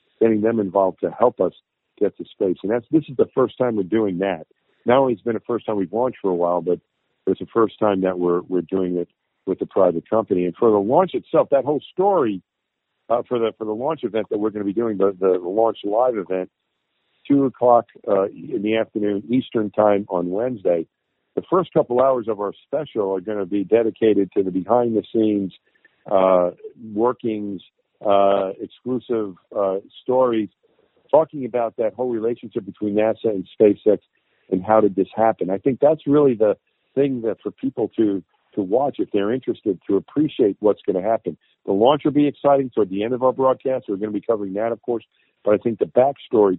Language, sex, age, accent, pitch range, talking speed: English, male, 50-69, American, 95-120 Hz, 210 wpm